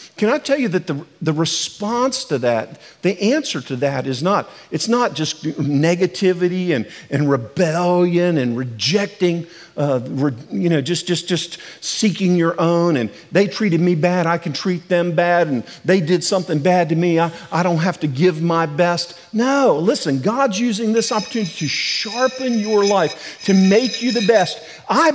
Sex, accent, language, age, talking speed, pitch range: male, American, English, 50-69, 180 wpm, 160-215 Hz